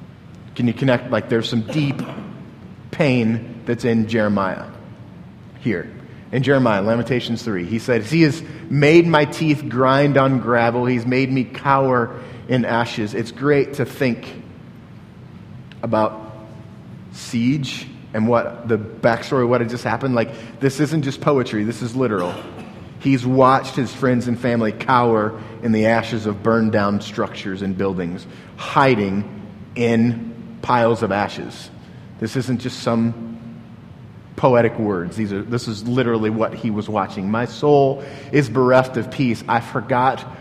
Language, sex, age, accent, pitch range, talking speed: English, male, 30-49, American, 115-140 Hz, 145 wpm